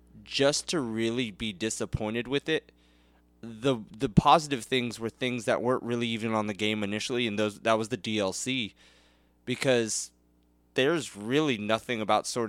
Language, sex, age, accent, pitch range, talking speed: English, male, 20-39, American, 105-130 Hz, 160 wpm